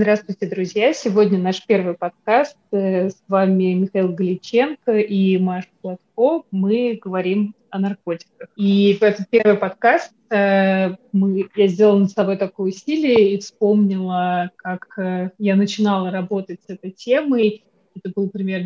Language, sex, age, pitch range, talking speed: Russian, female, 20-39, 190-215 Hz, 130 wpm